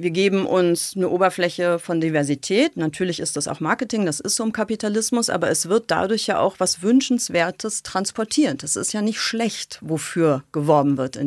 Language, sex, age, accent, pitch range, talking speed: German, female, 40-59, German, 175-215 Hz, 190 wpm